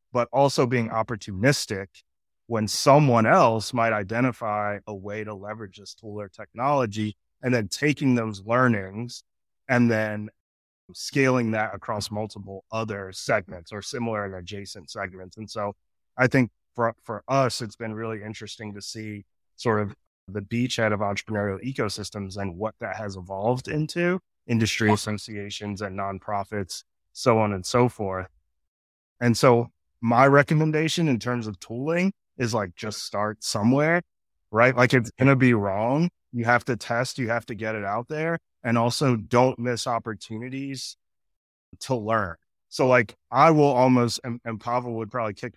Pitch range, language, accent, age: 100-125 Hz, English, American, 20-39